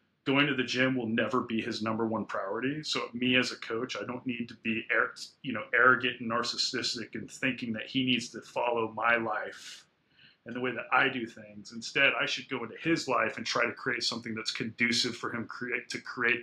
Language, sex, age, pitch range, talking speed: English, male, 30-49, 115-145 Hz, 220 wpm